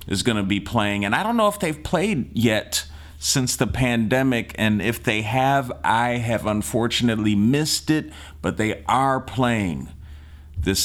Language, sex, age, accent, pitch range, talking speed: English, male, 30-49, American, 90-120 Hz, 165 wpm